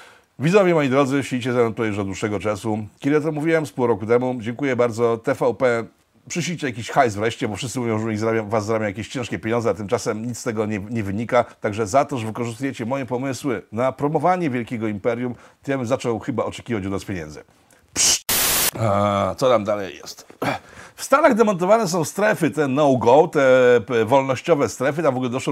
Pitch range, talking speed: 100-130 Hz, 200 wpm